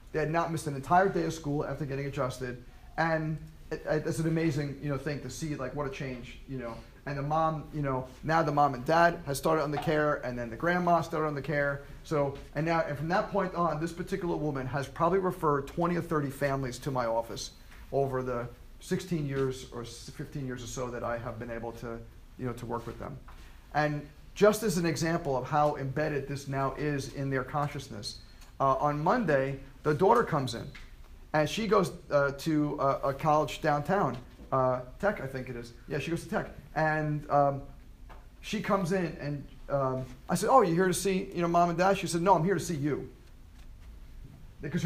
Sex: male